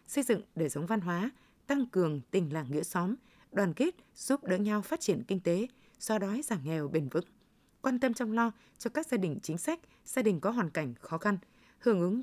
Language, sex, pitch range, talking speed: Vietnamese, female, 175-235 Hz, 225 wpm